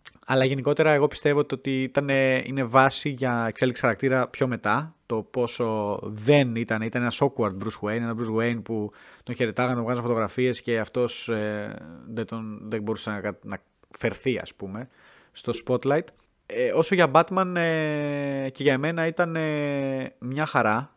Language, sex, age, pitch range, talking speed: Greek, male, 30-49, 110-140 Hz, 145 wpm